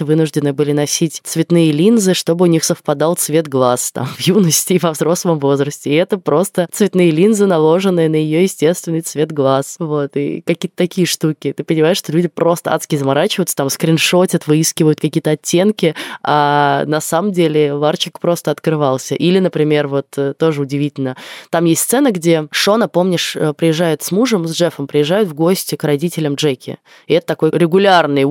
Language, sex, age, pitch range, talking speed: Russian, female, 20-39, 150-180 Hz, 165 wpm